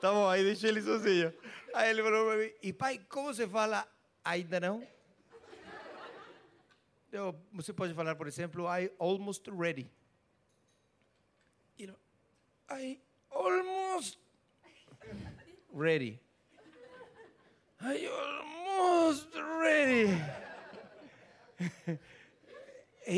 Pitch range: 175-280 Hz